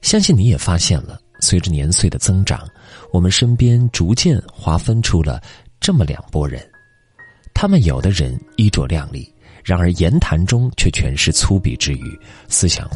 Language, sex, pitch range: Chinese, male, 85-120 Hz